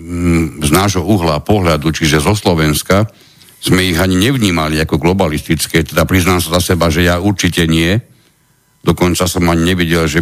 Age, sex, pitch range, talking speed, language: 60-79, male, 80-95 Hz, 160 wpm, Slovak